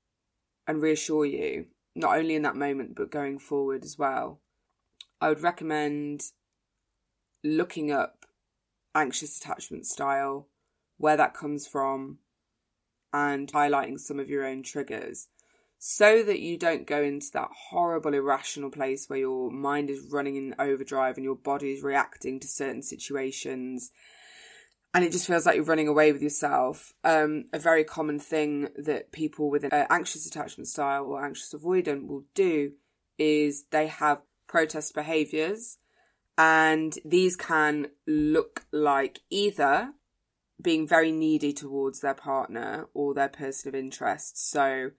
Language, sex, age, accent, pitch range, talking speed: English, female, 20-39, British, 140-155 Hz, 145 wpm